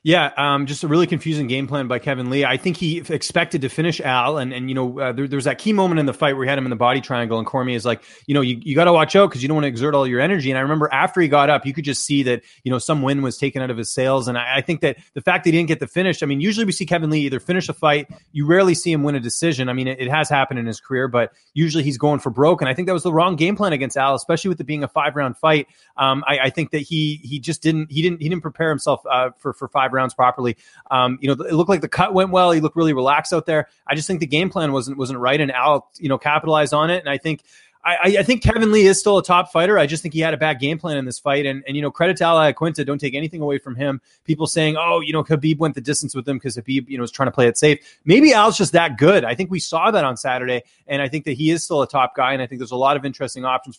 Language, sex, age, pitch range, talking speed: English, male, 30-49, 135-160 Hz, 325 wpm